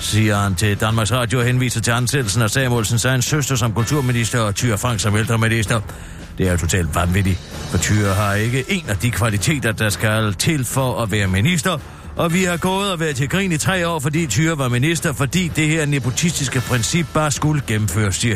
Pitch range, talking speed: 105-175 Hz, 205 wpm